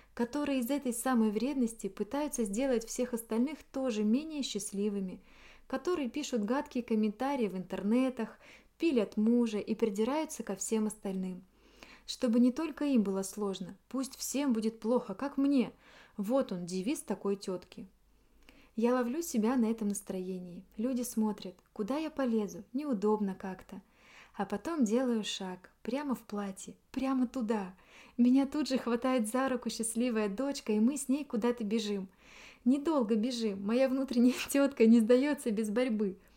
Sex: female